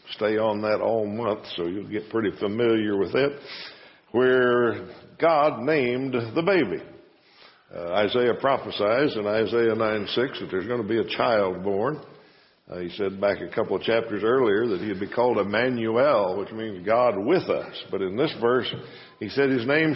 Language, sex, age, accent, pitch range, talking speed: English, male, 60-79, American, 105-135 Hz, 175 wpm